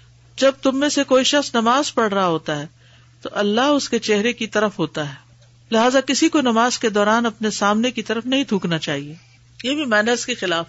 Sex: female